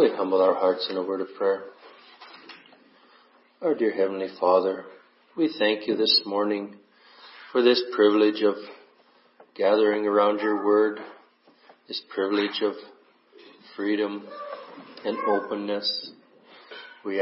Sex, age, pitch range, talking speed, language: male, 40-59, 105-130 Hz, 115 wpm, English